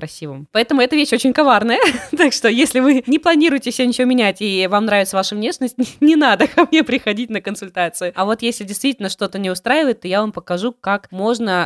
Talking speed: 205 wpm